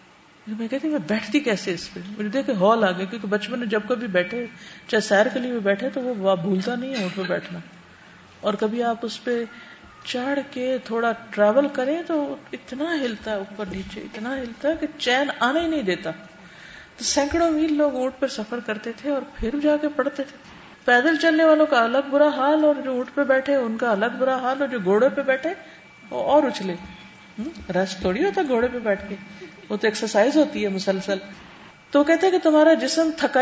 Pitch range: 195-270 Hz